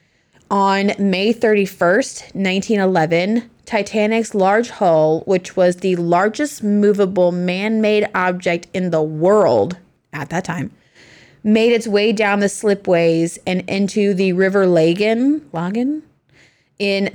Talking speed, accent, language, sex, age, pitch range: 110 wpm, American, English, female, 20-39, 180-220 Hz